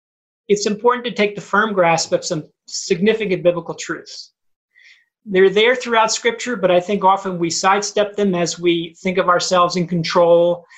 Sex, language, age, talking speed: male, English, 40-59, 165 wpm